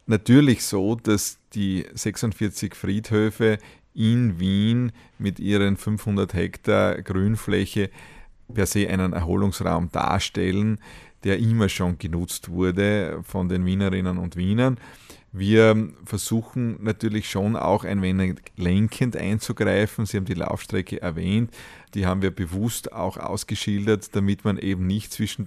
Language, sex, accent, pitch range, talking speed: German, male, Austrian, 95-115 Hz, 125 wpm